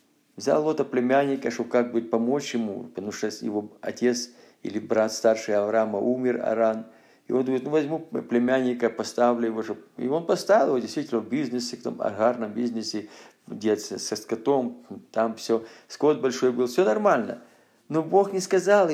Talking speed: 160 wpm